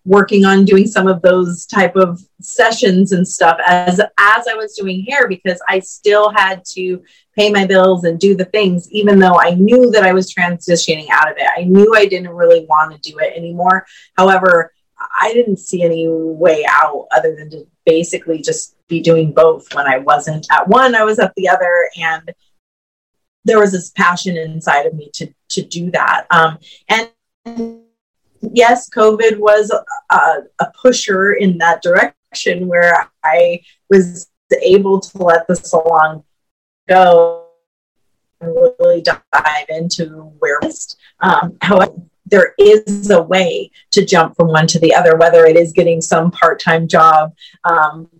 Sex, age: female, 30-49